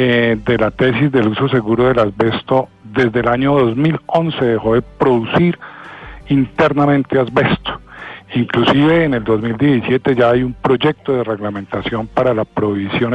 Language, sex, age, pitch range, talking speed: Spanish, male, 50-69, 115-140 Hz, 135 wpm